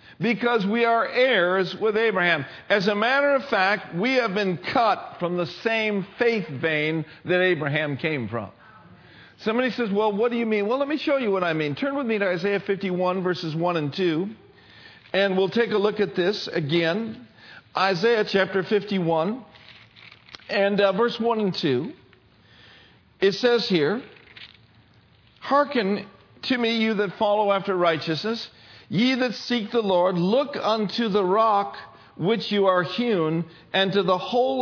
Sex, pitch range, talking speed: male, 180-235 Hz, 165 wpm